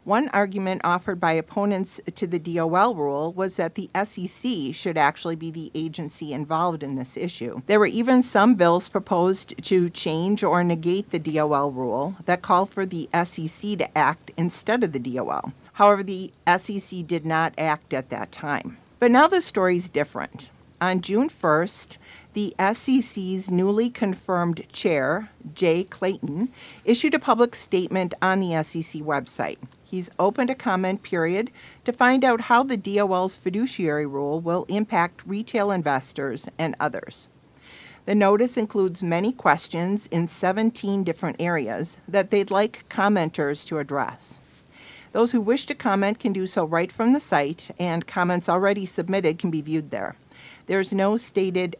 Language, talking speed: English, 160 wpm